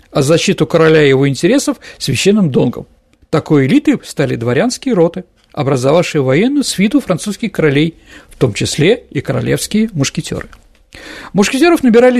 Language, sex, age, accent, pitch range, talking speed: Russian, male, 50-69, native, 150-230 Hz, 130 wpm